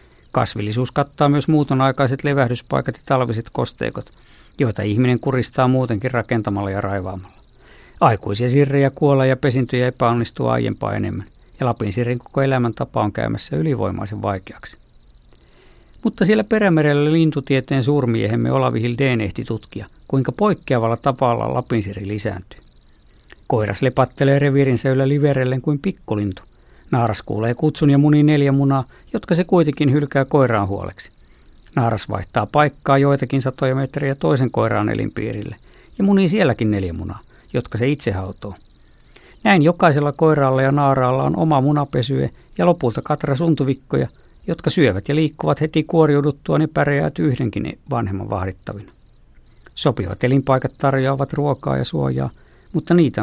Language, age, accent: Finnish, 50-69, native